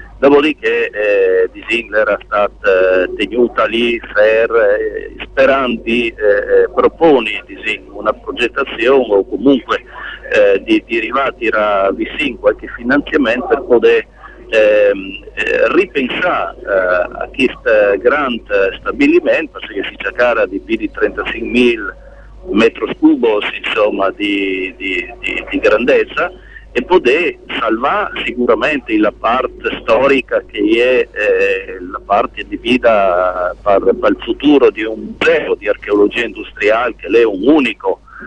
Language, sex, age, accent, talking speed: Italian, male, 50-69, native, 125 wpm